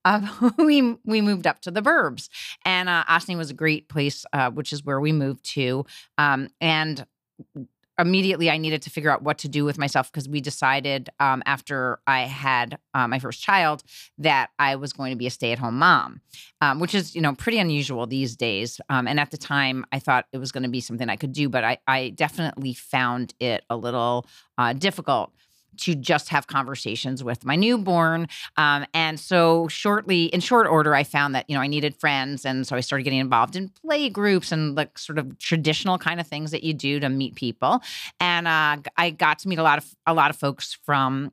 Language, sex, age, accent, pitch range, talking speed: English, female, 30-49, American, 135-165 Hz, 220 wpm